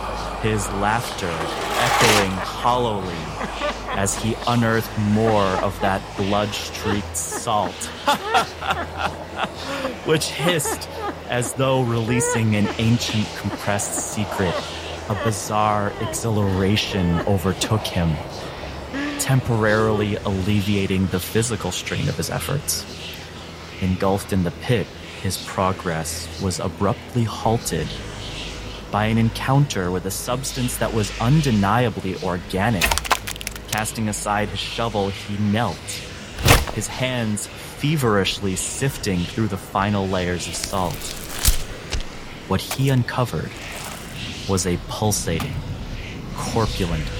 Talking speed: 95 wpm